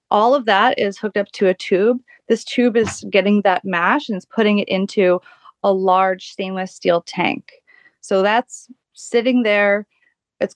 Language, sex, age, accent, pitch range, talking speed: English, female, 30-49, American, 180-220 Hz, 170 wpm